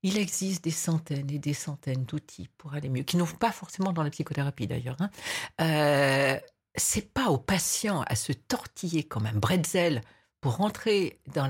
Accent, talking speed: French, 175 wpm